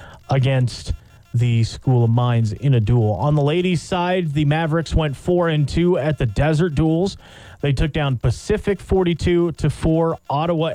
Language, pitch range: English, 120-155 Hz